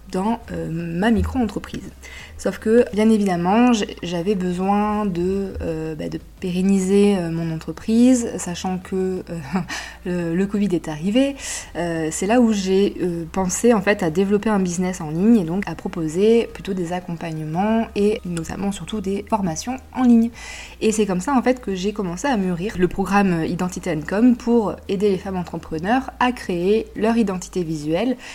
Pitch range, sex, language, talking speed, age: 170-210 Hz, female, French, 165 wpm, 20-39